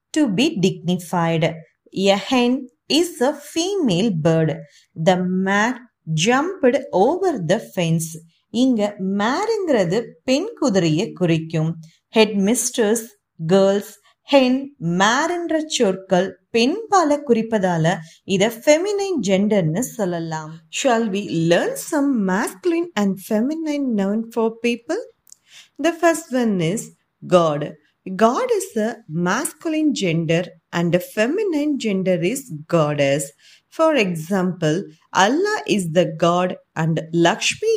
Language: Tamil